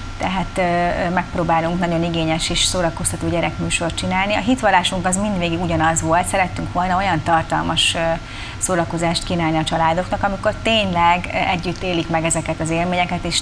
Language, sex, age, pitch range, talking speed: Hungarian, female, 30-49, 155-180 Hz, 140 wpm